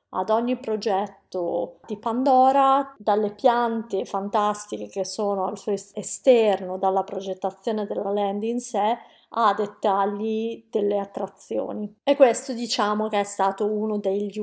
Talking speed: 130 wpm